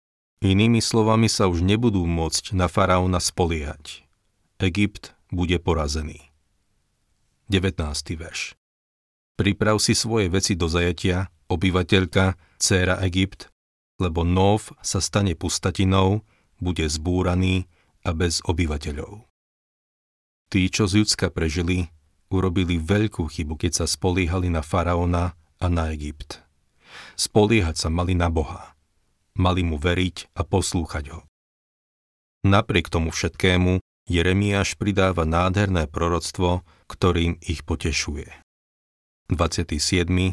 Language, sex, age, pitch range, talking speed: Slovak, male, 40-59, 80-95 Hz, 105 wpm